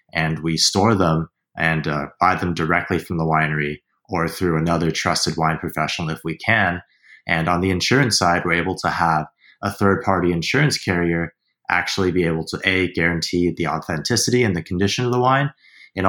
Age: 20-39